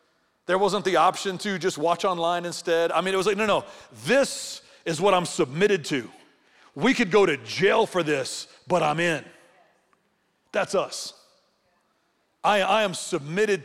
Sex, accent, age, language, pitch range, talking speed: male, American, 40-59, English, 175-245 Hz, 165 wpm